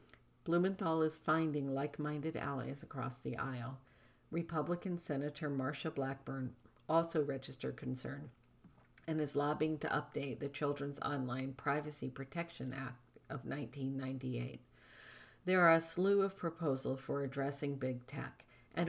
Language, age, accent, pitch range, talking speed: English, 50-69, American, 130-155 Hz, 125 wpm